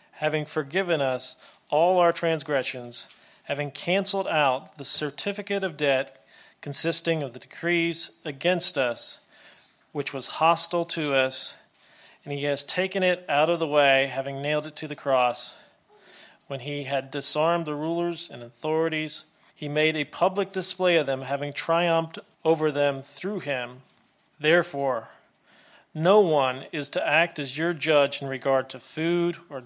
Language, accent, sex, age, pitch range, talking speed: English, American, male, 40-59, 135-165 Hz, 150 wpm